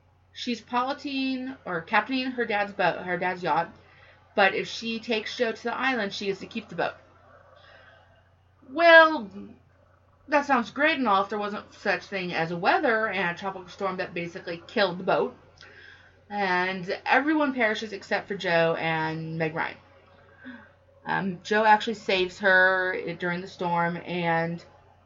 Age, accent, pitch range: 30-49, American, 165-225 Hz